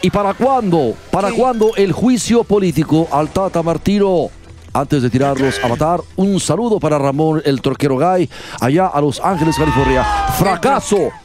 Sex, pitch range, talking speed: male, 120-175 Hz, 155 wpm